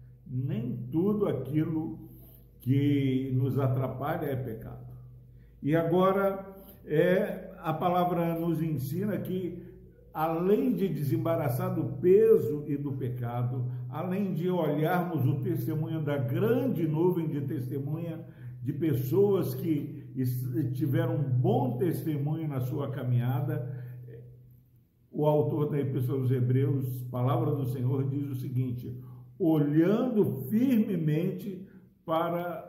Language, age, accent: Portuguese, 60-79, Brazilian